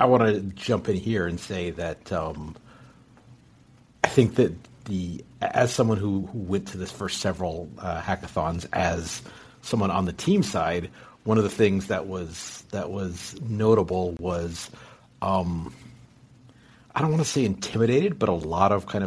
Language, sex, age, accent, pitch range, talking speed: English, male, 50-69, American, 90-115 Hz, 160 wpm